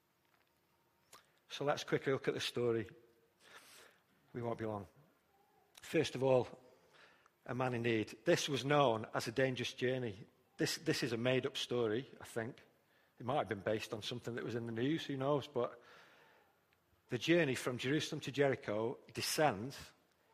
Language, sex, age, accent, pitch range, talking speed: English, male, 50-69, British, 115-150 Hz, 160 wpm